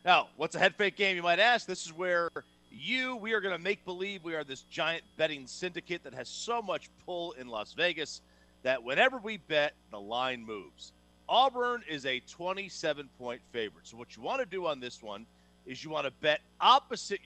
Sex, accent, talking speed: male, American, 210 wpm